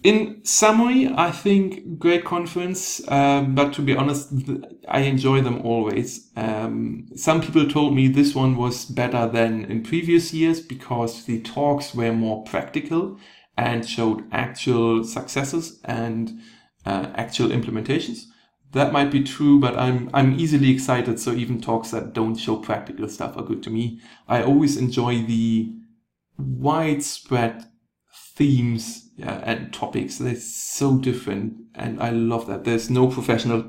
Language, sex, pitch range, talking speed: English, male, 115-140 Hz, 145 wpm